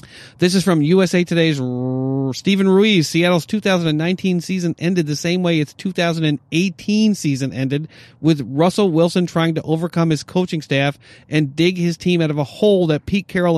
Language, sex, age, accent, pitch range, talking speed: English, male, 40-59, American, 150-185 Hz, 170 wpm